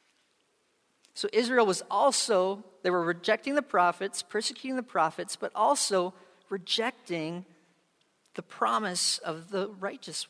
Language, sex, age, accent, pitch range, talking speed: English, male, 40-59, American, 190-255 Hz, 115 wpm